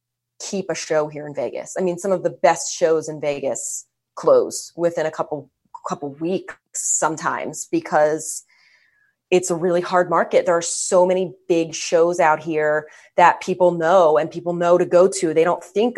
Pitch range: 155-185 Hz